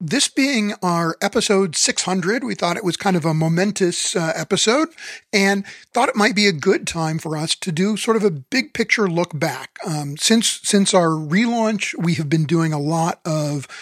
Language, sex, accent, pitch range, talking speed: English, male, American, 165-210 Hz, 200 wpm